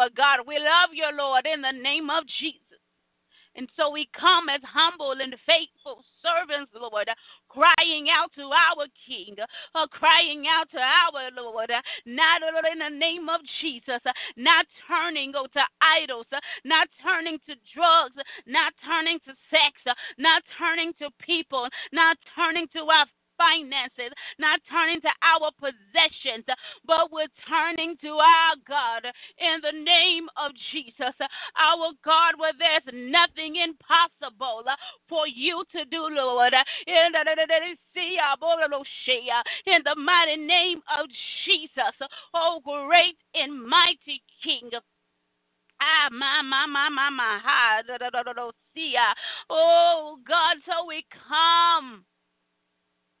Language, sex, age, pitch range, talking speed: English, female, 30-49, 270-330 Hz, 115 wpm